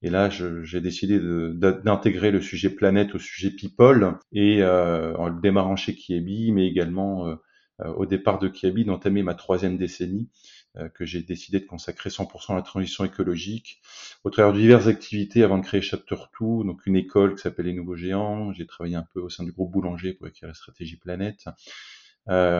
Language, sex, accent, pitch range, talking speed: French, male, French, 90-100 Hz, 200 wpm